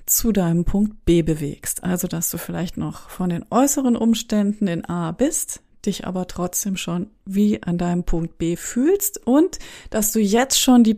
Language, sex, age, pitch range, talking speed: German, female, 30-49, 180-225 Hz, 180 wpm